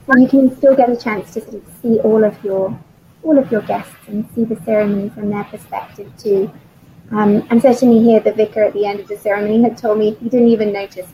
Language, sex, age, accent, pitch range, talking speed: English, female, 20-39, British, 210-255 Hz, 240 wpm